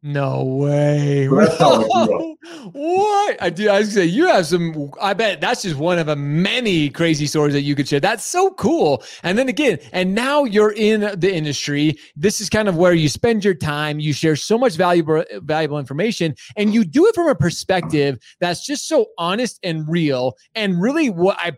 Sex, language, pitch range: male, English, 150-205 Hz